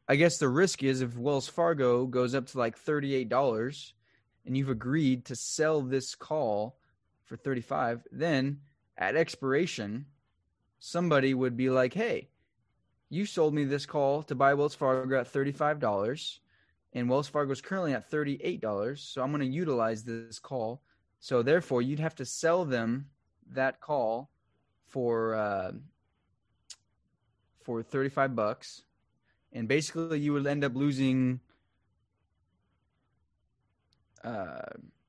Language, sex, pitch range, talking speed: English, male, 115-145 Hz, 130 wpm